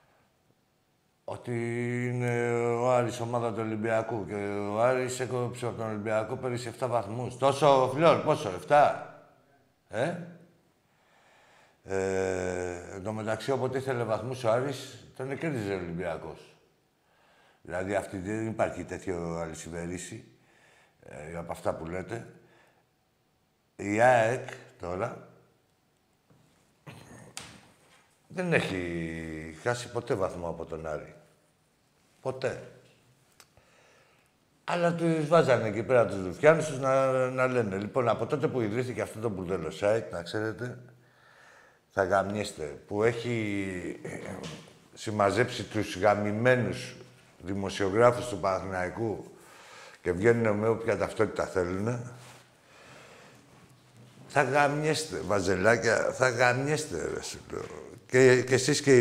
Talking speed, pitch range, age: 105 wpm, 100-130 Hz, 60-79